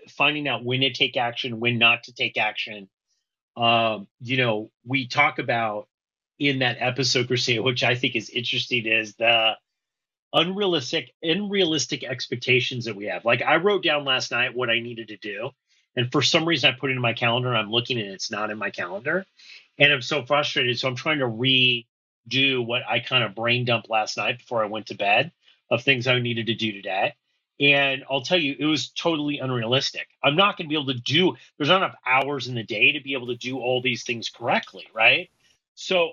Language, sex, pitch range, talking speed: English, male, 120-145 Hz, 210 wpm